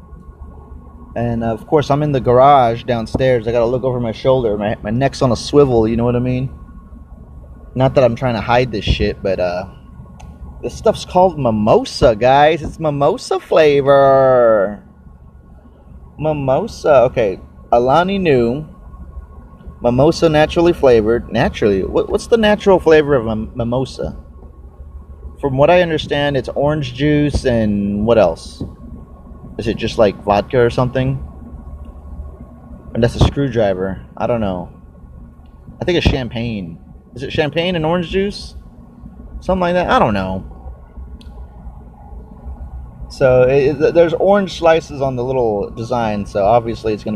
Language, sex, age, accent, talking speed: English, male, 30-49, American, 140 wpm